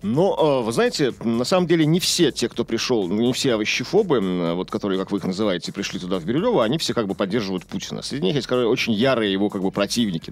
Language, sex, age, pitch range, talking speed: Russian, male, 40-59, 100-145 Hz, 240 wpm